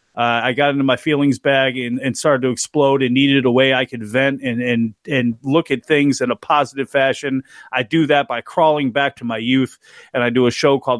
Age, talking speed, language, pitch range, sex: 40-59, 240 wpm, English, 130-150 Hz, male